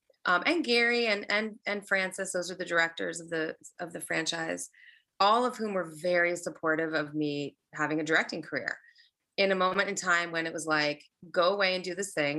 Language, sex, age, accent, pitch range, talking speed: English, female, 20-39, American, 165-195 Hz, 210 wpm